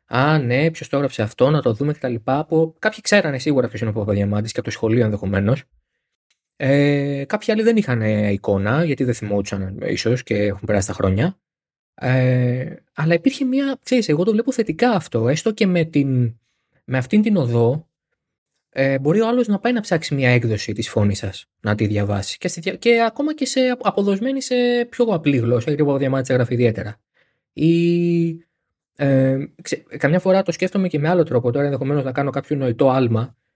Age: 20-39